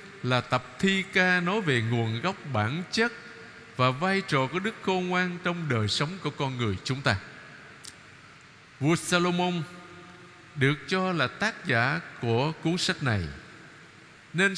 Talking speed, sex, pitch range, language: 150 wpm, male, 130-185 Hz, Vietnamese